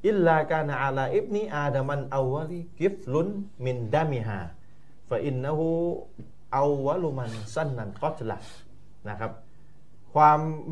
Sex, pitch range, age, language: male, 120-165 Hz, 30-49, Thai